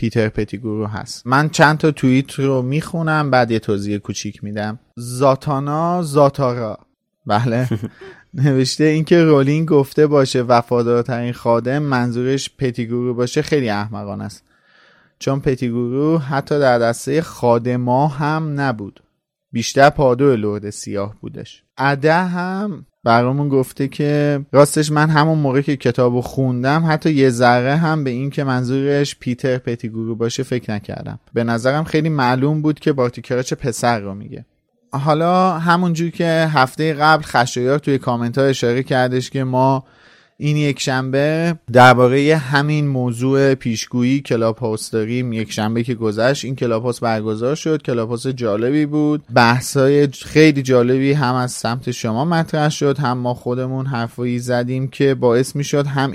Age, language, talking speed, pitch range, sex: 30-49, Persian, 135 wpm, 120-145 Hz, male